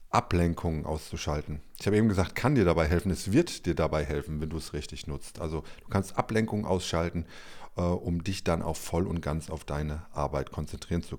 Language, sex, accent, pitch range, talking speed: German, male, German, 80-105 Hz, 200 wpm